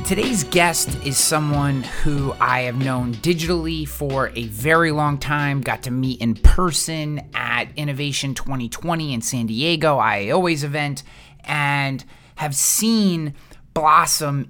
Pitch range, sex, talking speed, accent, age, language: 125-165 Hz, male, 130 wpm, American, 30-49, English